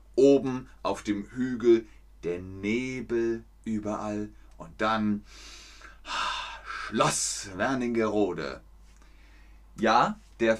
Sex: male